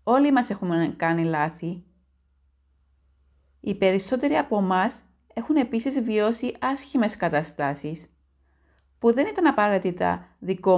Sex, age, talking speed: female, 30-49, 105 wpm